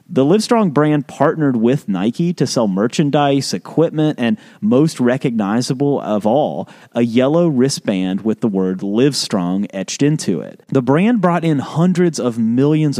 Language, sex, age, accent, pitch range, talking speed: English, male, 30-49, American, 120-180 Hz, 150 wpm